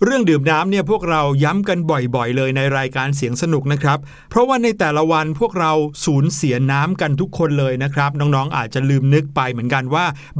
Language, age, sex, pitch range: Thai, 60-79, male, 145-185 Hz